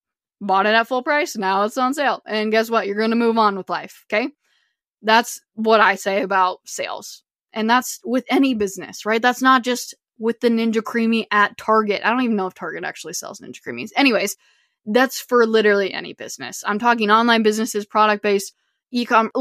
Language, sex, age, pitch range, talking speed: English, female, 20-39, 205-255 Hz, 195 wpm